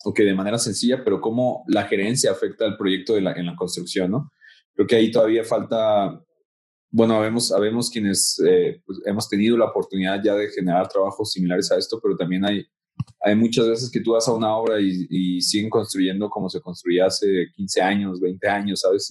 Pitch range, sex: 95-115 Hz, male